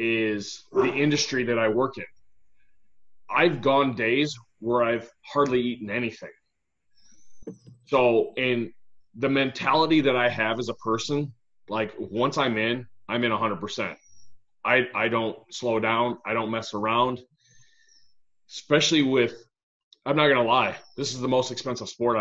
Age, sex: 30-49, male